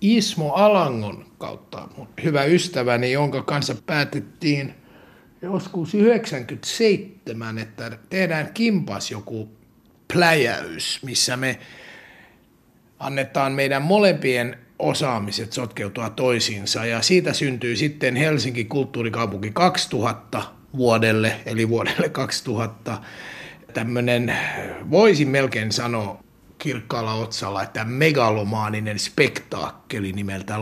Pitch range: 115-150 Hz